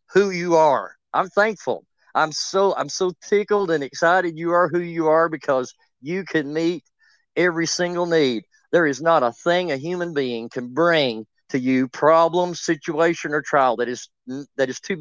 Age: 40-59